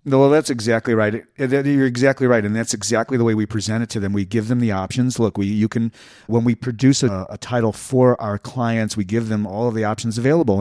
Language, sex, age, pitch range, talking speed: English, male, 40-59, 100-125 Hz, 245 wpm